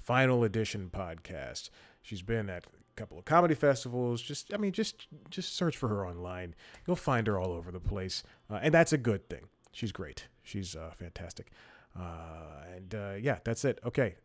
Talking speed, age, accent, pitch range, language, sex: 190 wpm, 30-49, American, 105-135 Hz, English, male